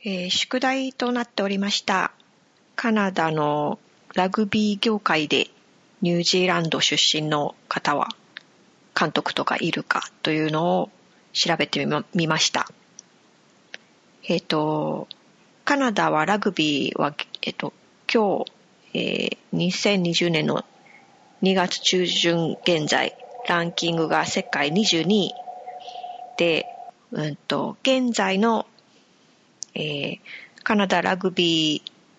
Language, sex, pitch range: Japanese, female, 170-240 Hz